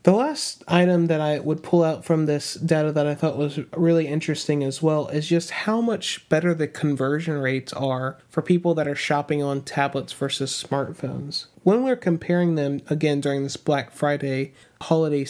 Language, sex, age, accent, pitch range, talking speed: English, male, 30-49, American, 140-170 Hz, 185 wpm